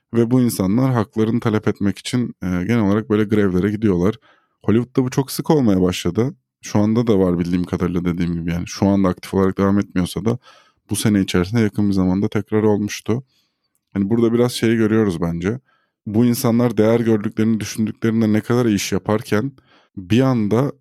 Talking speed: 175 wpm